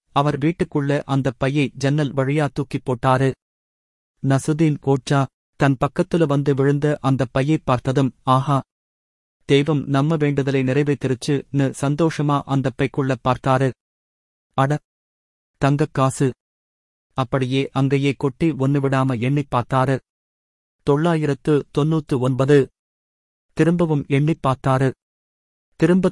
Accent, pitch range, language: native, 130-150 Hz, Tamil